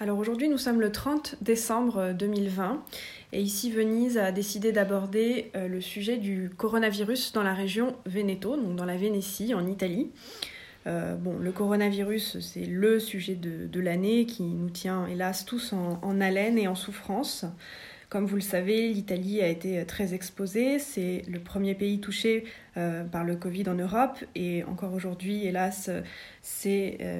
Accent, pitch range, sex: French, 190-235 Hz, female